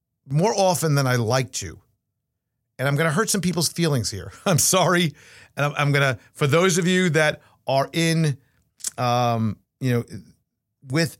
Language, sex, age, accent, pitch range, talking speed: English, male, 50-69, American, 125-175 Hz, 170 wpm